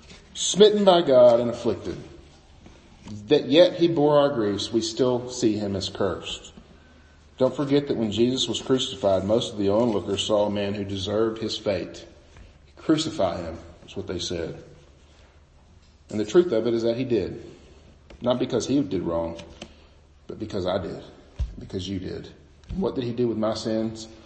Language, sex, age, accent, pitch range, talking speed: English, male, 40-59, American, 80-130 Hz, 170 wpm